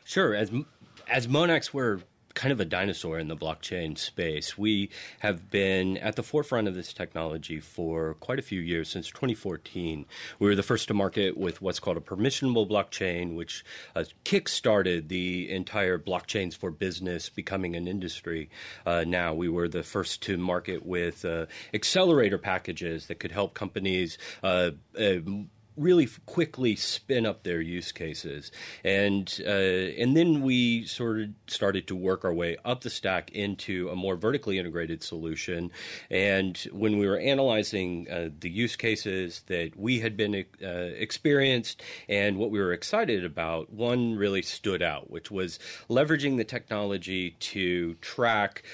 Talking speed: 160 wpm